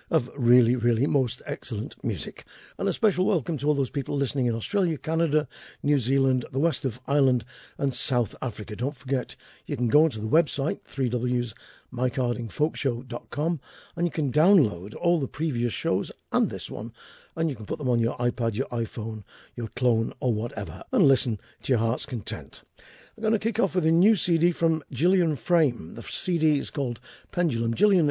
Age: 50-69